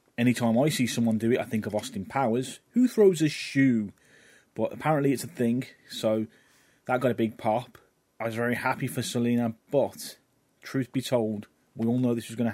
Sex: male